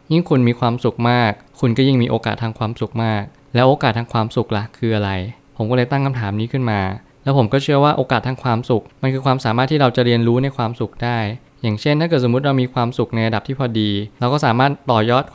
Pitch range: 110-135 Hz